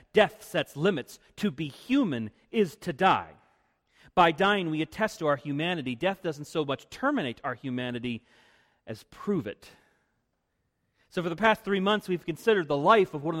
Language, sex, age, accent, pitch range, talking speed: English, male, 40-59, American, 160-225 Hz, 175 wpm